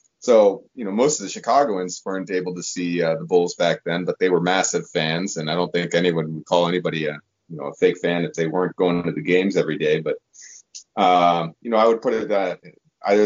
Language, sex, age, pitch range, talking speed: English, male, 30-49, 85-105 Hz, 245 wpm